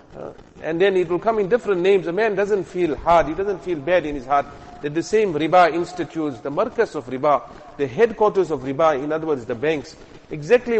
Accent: Indian